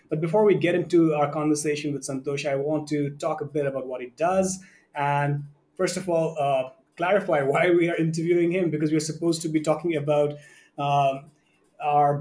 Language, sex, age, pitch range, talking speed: English, male, 30-49, 145-175 Hz, 190 wpm